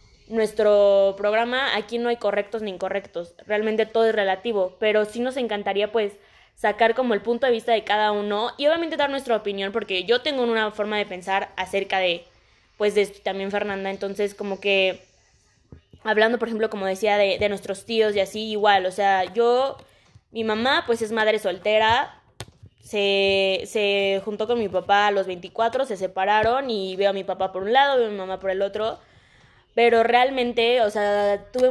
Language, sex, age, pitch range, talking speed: Spanish, female, 20-39, 200-230 Hz, 190 wpm